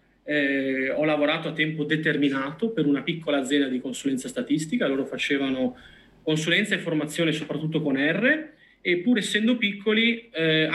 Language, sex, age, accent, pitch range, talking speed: Italian, male, 30-49, native, 135-205 Hz, 145 wpm